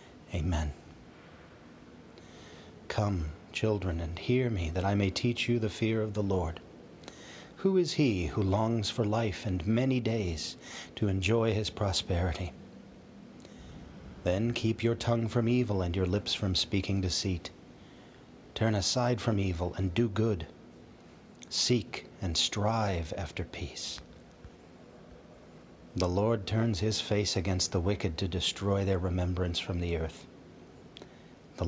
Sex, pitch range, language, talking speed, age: male, 85-110 Hz, English, 135 wpm, 40-59